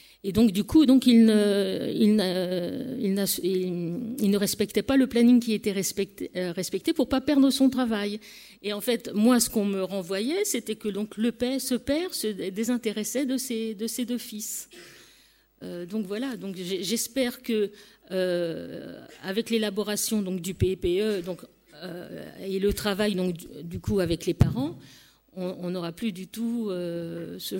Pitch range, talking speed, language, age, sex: 185-235 Hz, 170 wpm, French, 50-69, female